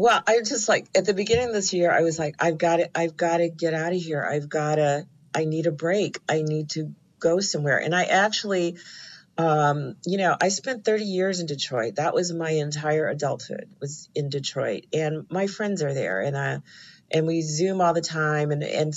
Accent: American